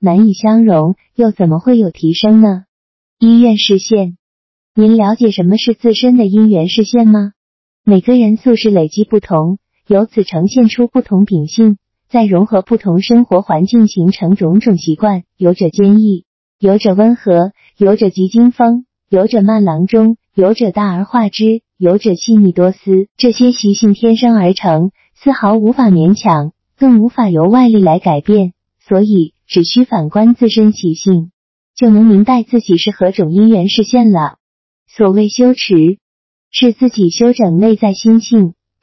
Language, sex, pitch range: Chinese, female, 185-230 Hz